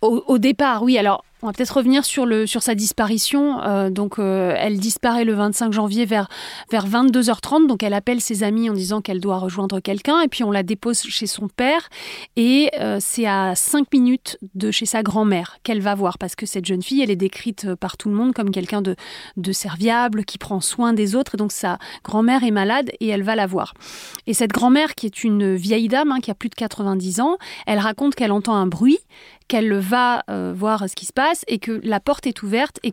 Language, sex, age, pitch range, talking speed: French, female, 30-49, 200-245 Hz, 230 wpm